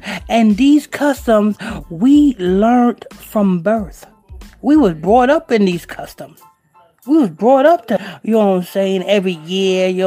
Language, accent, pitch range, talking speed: English, American, 195-255 Hz, 160 wpm